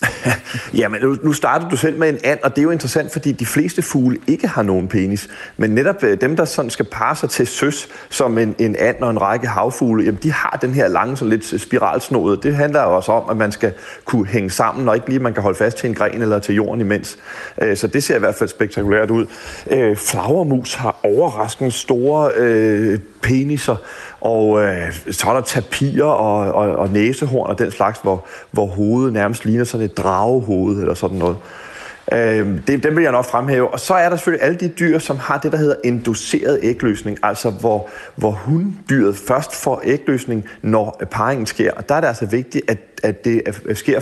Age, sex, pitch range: 30-49, male, 105-140 Hz